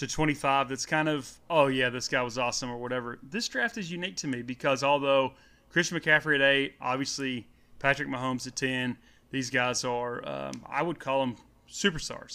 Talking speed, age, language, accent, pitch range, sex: 190 wpm, 30-49, English, American, 125-155 Hz, male